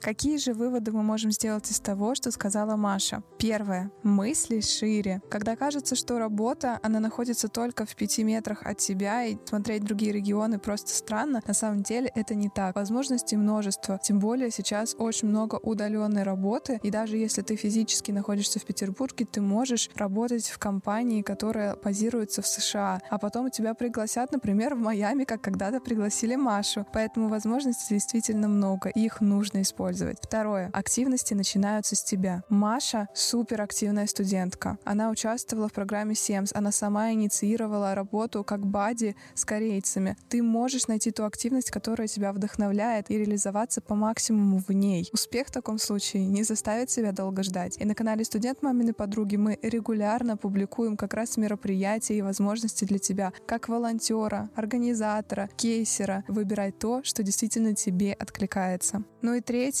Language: Russian